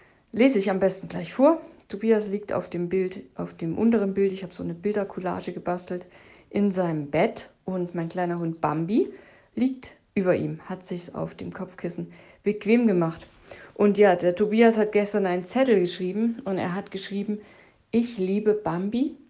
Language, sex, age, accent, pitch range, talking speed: German, female, 50-69, German, 175-215 Hz, 175 wpm